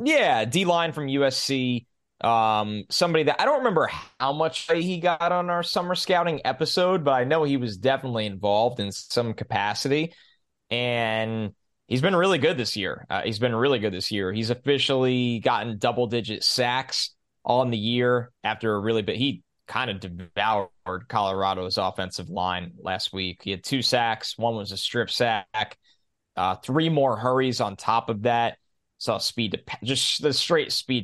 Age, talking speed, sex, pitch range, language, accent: 20-39, 170 wpm, male, 105-140 Hz, English, American